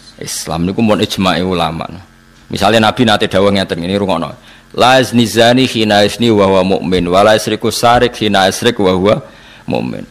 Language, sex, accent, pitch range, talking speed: English, male, Indonesian, 100-125 Hz, 140 wpm